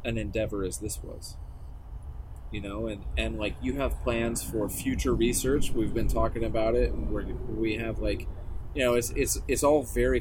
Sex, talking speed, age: male, 195 wpm, 30-49